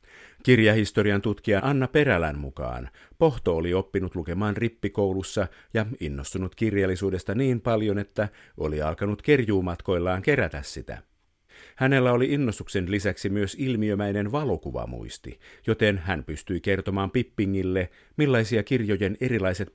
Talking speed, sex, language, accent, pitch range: 110 wpm, male, Finnish, native, 90-110 Hz